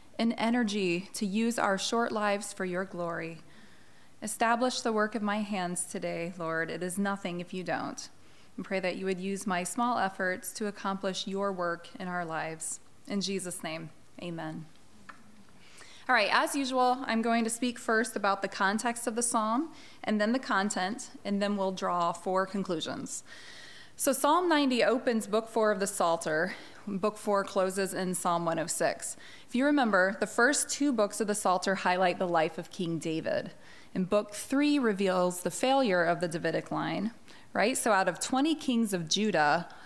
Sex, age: female, 20-39